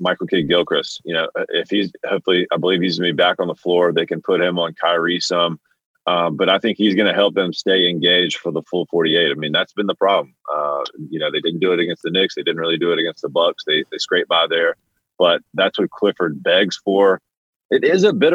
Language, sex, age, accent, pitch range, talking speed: English, male, 30-49, American, 85-105 Hz, 260 wpm